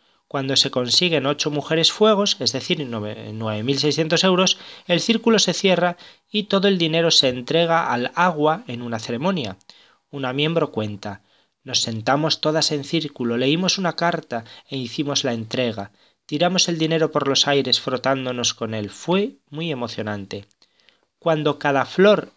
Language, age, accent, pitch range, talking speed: Spanish, 20-39, Spanish, 125-170 Hz, 150 wpm